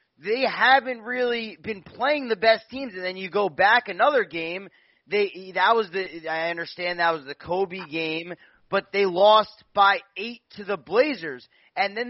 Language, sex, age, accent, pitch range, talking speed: English, male, 20-39, American, 155-220 Hz, 180 wpm